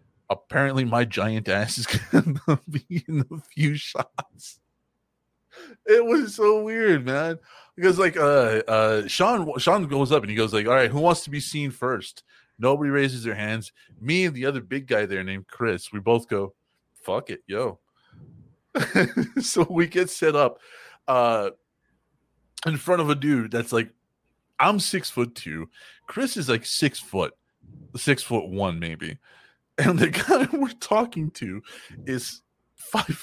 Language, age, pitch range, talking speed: English, 30-49, 110-175 Hz, 165 wpm